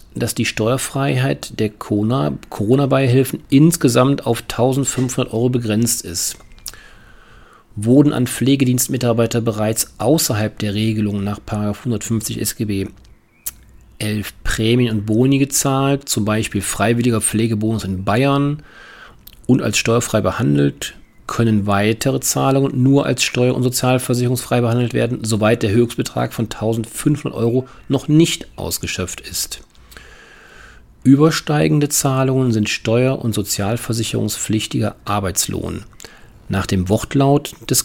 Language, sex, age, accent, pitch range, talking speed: German, male, 40-59, German, 105-130 Hz, 105 wpm